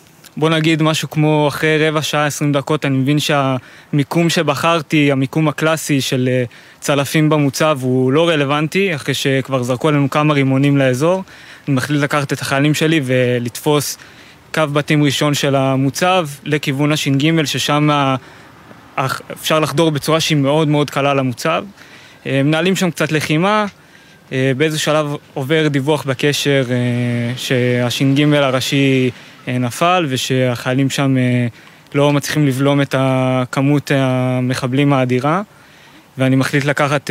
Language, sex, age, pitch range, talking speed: Hebrew, male, 20-39, 135-155 Hz, 120 wpm